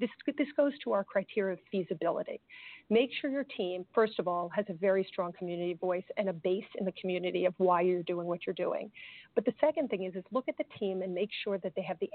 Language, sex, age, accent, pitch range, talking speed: English, female, 40-59, American, 185-230 Hz, 250 wpm